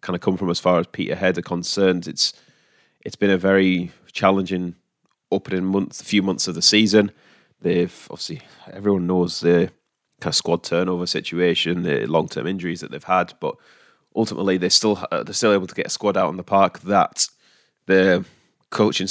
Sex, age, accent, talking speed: male, 20-39, British, 190 wpm